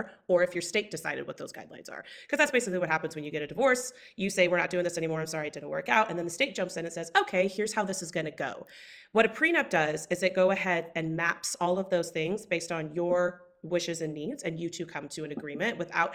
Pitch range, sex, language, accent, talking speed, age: 165-215 Hz, female, English, American, 285 wpm, 30-49